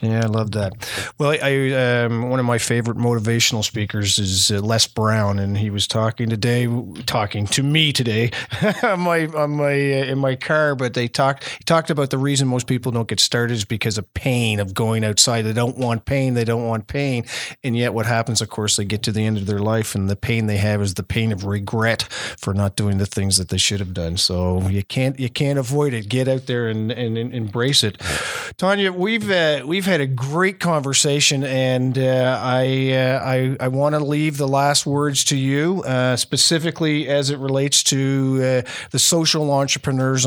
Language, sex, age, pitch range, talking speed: English, male, 40-59, 115-145 Hz, 215 wpm